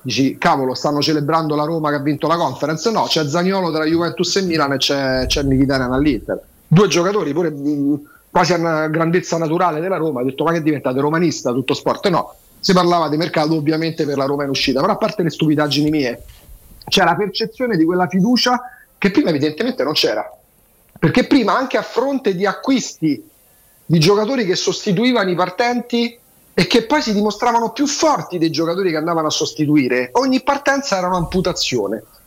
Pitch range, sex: 150-200 Hz, male